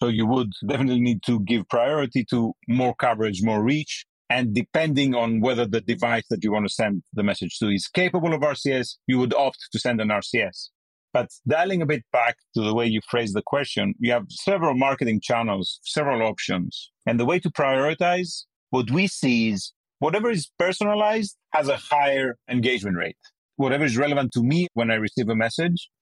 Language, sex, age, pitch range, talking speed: English, male, 40-59, 120-160 Hz, 195 wpm